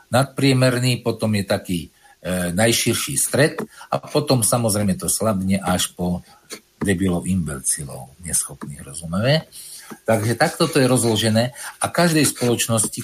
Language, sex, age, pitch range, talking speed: Slovak, male, 50-69, 95-125 Hz, 120 wpm